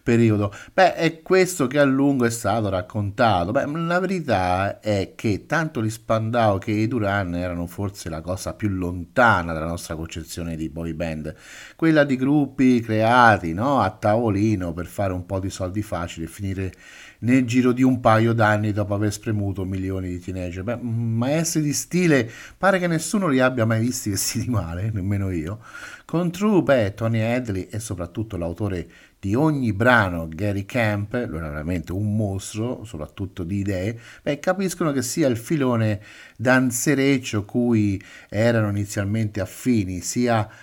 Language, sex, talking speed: Italian, male, 160 wpm